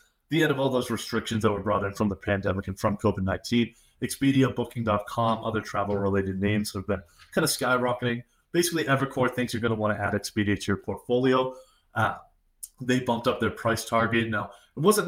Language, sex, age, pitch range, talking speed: English, male, 30-49, 105-130 Hz, 195 wpm